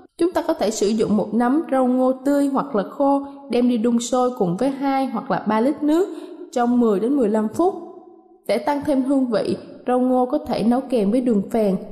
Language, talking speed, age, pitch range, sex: Vietnamese, 225 wpm, 20-39, 225-305 Hz, female